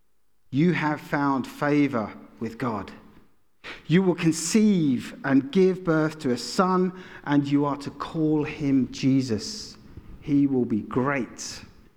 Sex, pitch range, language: male, 125-200 Hz, English